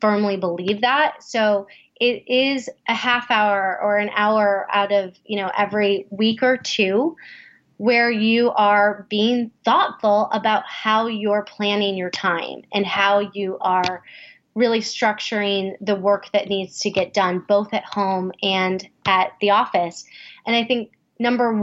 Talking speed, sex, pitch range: 155 wpm, female, 200-245 Hz